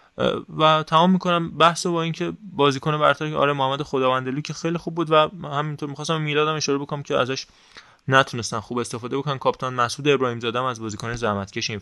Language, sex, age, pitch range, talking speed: Persian, male, 20-39, 115-145 Hz, 180 wpm